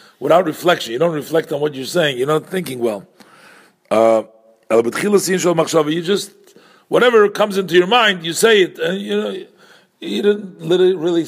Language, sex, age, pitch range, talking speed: English, male, 50-69, 135-180 Hz, 160 wpm